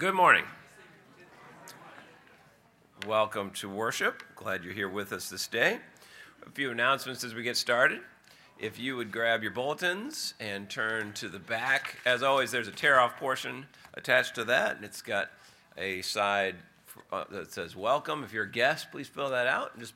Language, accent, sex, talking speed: English, American, male, 170 wpm